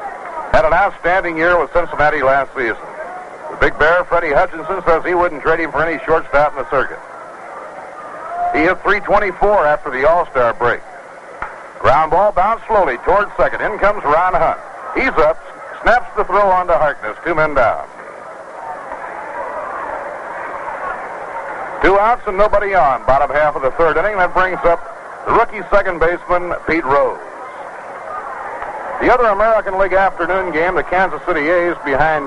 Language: English